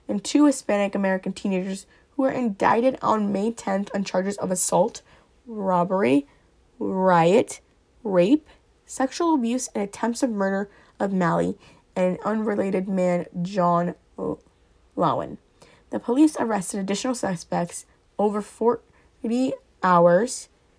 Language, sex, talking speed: English, female, 120 wpm